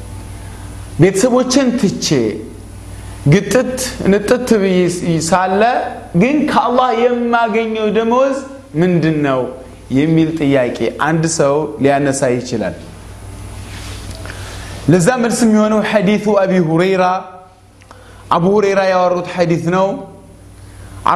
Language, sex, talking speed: Amharic, male, 70 wpm